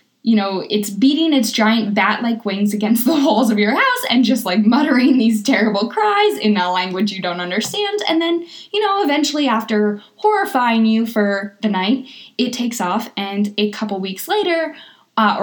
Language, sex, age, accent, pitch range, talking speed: English, female, 10-29, American, 205-270 Hz, 185 wpm